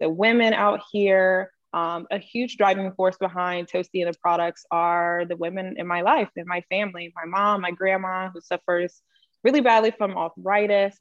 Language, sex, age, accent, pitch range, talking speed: English, female, 20-39, American, 170-200 Hz, 180 wpm